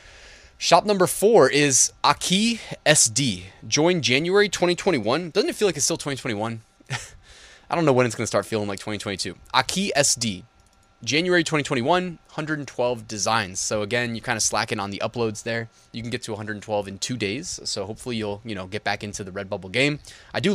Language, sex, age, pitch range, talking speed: English, male, 20-39, 105-145 Hz, 185 wpm